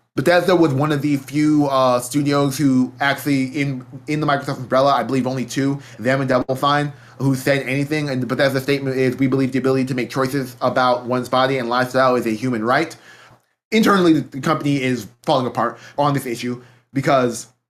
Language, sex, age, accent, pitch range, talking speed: English, male, 20-39, American, 125-150 Hz, 190 wpm